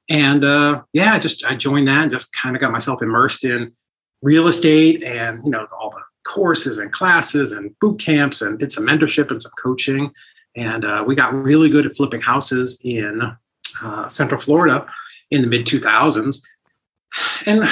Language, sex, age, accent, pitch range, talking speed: English, male, 40-59, American, 120-155 Hz, 180 wpm